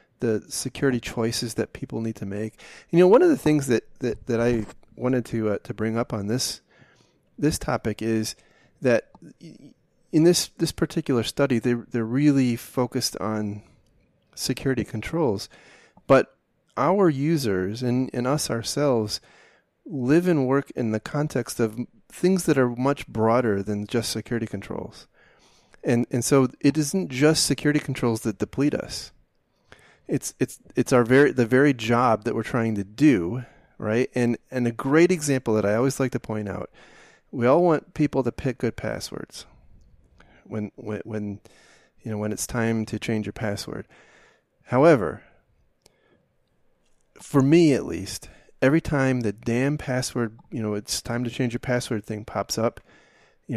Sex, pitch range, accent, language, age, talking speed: male, 110-135 Hz, American, English, 30-49, 160 wpm